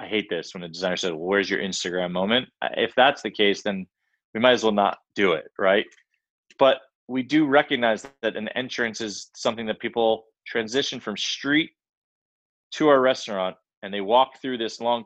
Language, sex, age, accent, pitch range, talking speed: English, male, 30-49, American, 105-130 Hz, 190 wpm